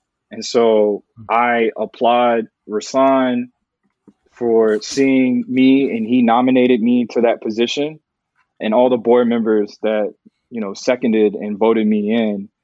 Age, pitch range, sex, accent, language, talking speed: 20-39, 105-130 Hz, male, American, English, 135 wpm